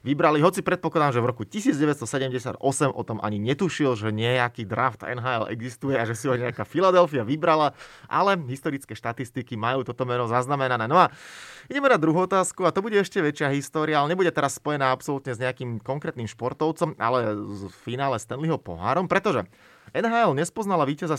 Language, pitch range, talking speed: Slovak, 120-160 Hz, 170 wpm